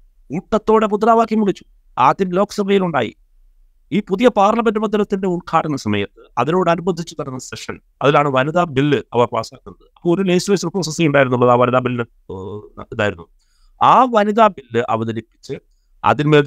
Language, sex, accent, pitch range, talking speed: Malayalam, male, native, 105-155 Hz, 125 wpm